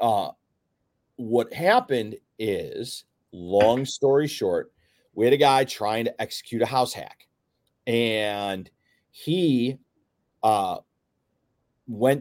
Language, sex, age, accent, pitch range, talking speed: English, male, 30-49, American, 105-130 Hz, 105 wpm